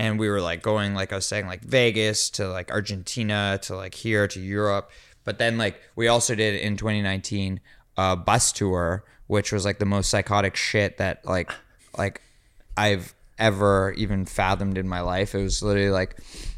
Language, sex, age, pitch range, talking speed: English, male, 20-39, 100-115 Hz, 185 wpm